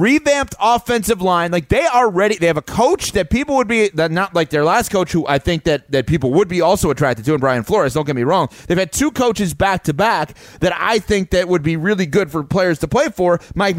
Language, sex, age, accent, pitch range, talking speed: English, male, 30-49, American, 180-270 Hz, 250 wpm